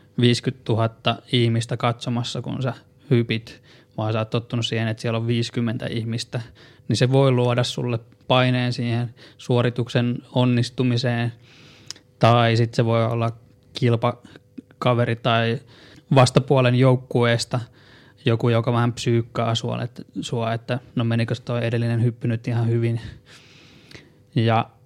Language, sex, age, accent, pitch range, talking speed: Finnish, male, 20-39, native, 115-130 Hz, 120 wpm